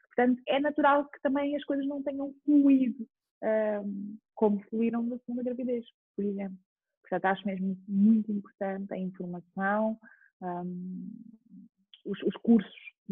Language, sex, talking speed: Portuguese, female, 135 wpm